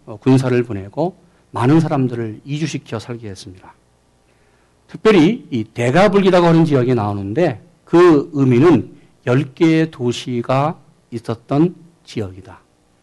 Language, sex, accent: Korean, male, native